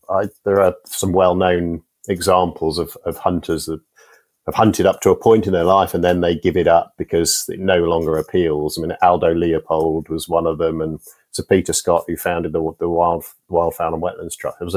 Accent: British